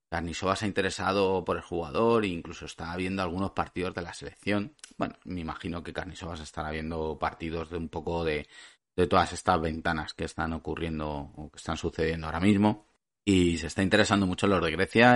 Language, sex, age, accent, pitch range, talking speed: Spanish, male, 30-49, Spanish, 85-95 Hz, 195 wpm